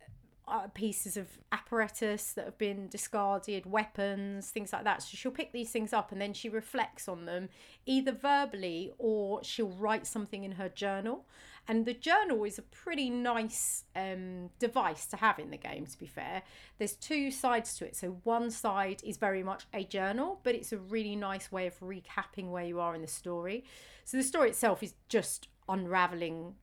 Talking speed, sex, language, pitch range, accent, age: 185 wpm, female, English, 180-225 Hz, British, 30-49